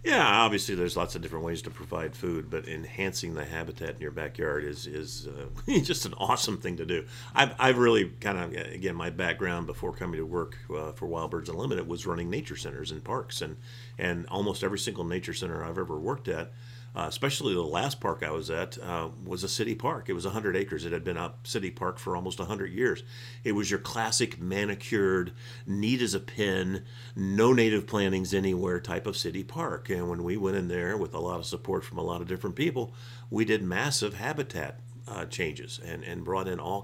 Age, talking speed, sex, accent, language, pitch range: 50-69, 215 wpm, male, American, English, 90-120 Hz